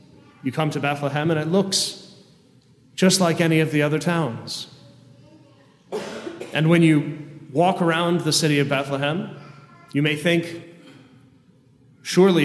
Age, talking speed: 30-49, 130 wpm